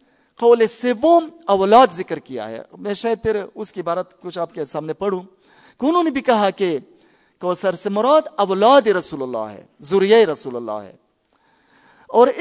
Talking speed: 170 wpm